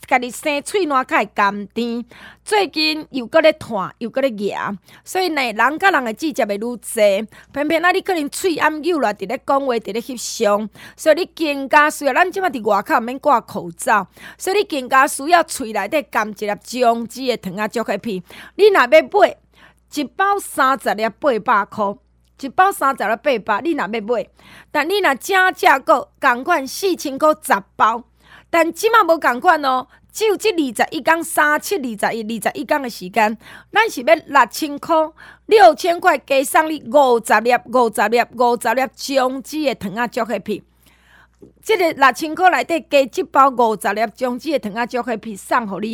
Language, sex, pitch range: Chinese, female, 230-320 Hz